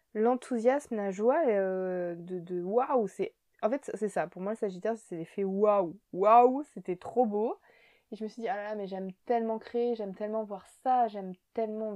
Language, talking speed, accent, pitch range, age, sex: French, 200 wpm, French, 190-235 Hz, 20-39, female